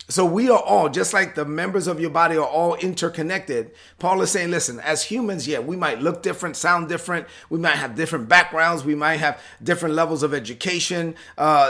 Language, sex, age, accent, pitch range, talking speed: English, male, 30-49, American, 145-170 Hz, 205 wpm